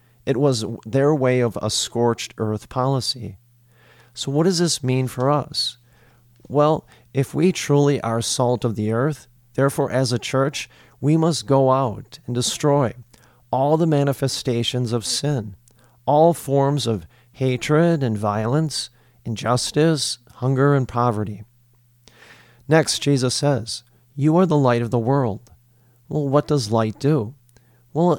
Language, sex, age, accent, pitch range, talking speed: English, male, 40-59, American, 120-140 Hz, 140 wpm